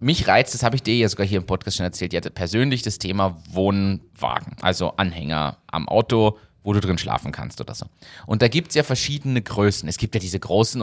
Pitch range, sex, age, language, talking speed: 95-130 Hz, male, 30-49, German, 235 wpm